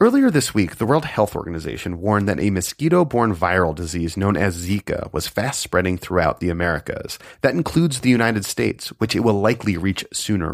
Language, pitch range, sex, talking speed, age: English, 90-120 Hz, male, 180 wpm, 30-49